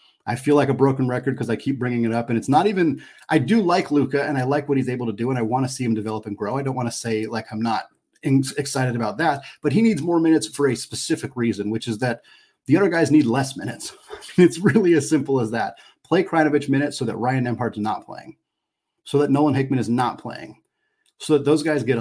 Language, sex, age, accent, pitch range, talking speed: English, male, 30-49, American, 115-145 Hz, 255 wpm